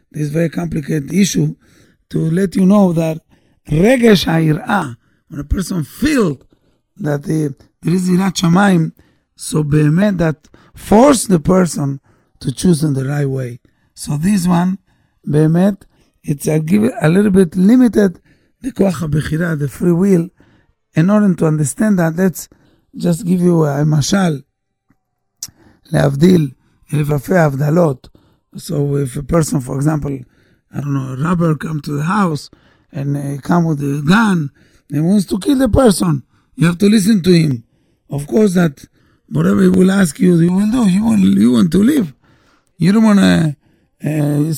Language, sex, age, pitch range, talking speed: English, male, 60-79, 150-195 Hz, 145 wpm